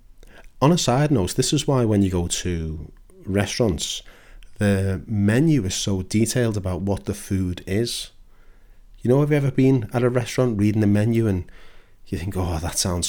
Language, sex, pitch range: English, male, 90-110 Hz